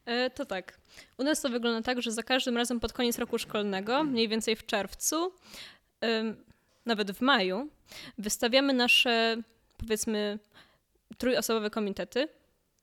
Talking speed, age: 125 wpm, 20-39